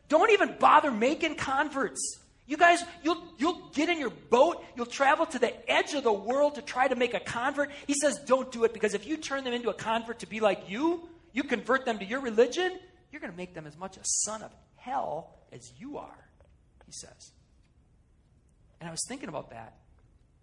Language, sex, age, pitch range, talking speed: English, male, 40-59, 145-240 Hz, 210 wpm